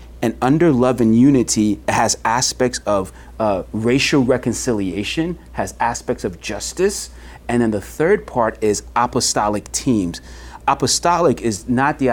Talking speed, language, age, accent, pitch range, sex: 135 wpm, English, 30-49, American, 95-125 Hz, male